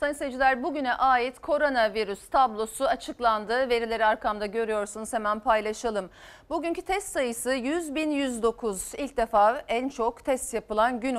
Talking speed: 125 wpm